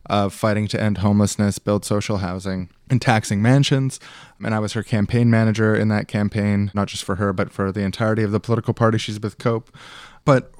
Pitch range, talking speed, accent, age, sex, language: 105-125 Hz, 205 wpm, American, 20-39, male, English